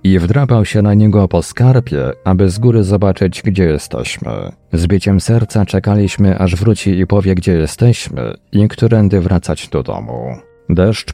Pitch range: 90-110 Hz